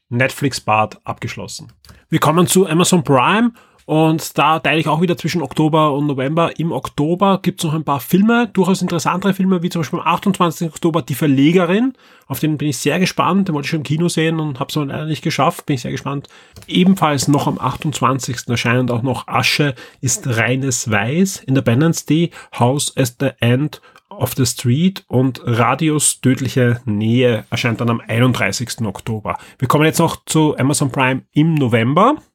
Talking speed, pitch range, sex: 185 wpm, 125-165 Hz, male